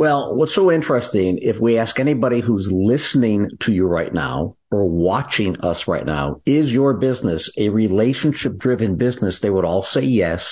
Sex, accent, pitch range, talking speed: male, American, 95-125 Hz, 175 wpm